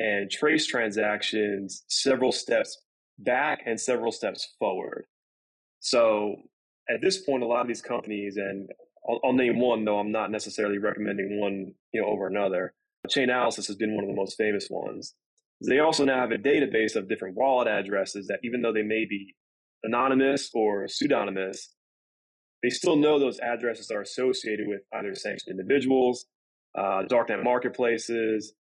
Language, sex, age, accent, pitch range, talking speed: English, male, 20-39, American, 100-125 Hz, 155 wpm